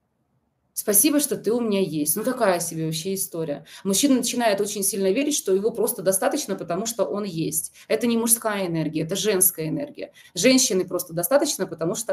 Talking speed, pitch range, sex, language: 180 wpm, 180-235 Hz, female, Russian